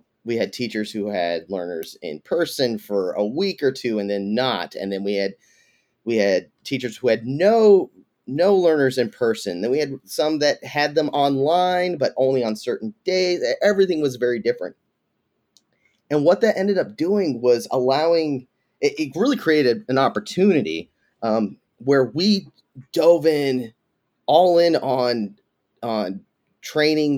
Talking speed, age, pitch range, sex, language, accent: 155 wpm, 30-49, 120-170 Hz, male, English, American